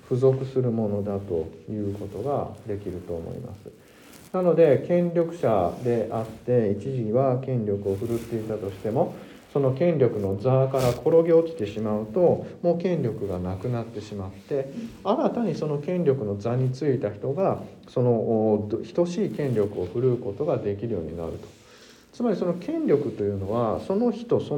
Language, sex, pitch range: Japanese, male, 105-170 Hz